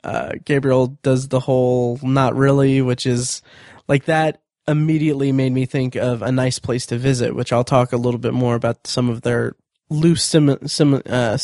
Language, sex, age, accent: English, male, 20-39, American